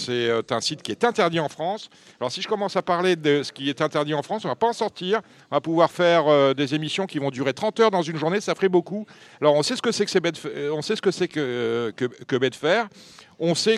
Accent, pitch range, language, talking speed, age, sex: French, 130-185 Hz, French, 245 wpm, 50-69, male